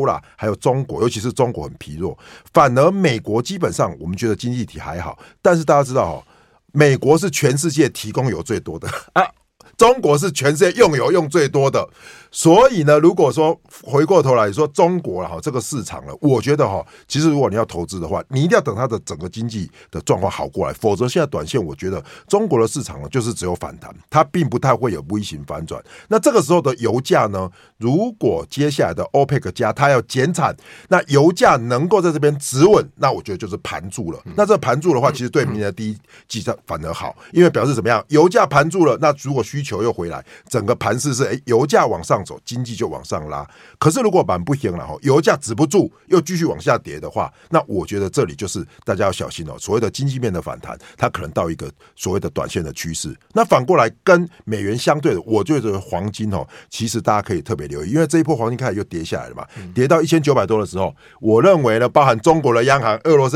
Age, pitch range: 50-69, 110-165 Hz